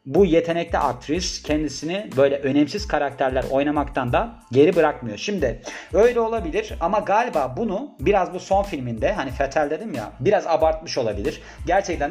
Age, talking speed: 40-59, 145 wpm